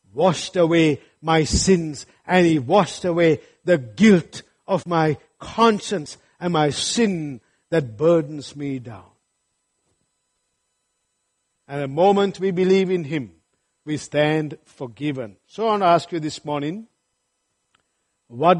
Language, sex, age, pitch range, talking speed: English, male, 60-79, 145-190 Hz, 125 wpm